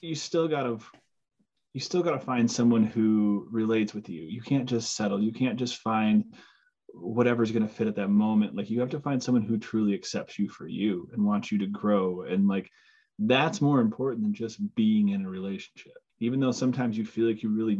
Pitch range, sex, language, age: 105-155 Hz, male, English, 20-39